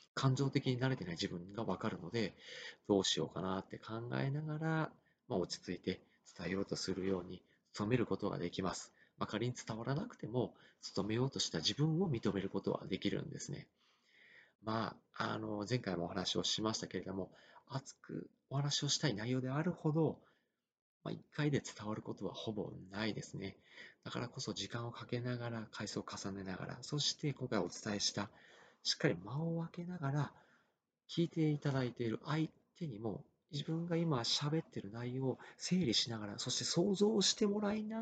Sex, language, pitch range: male, Japanese, 100-145 Hz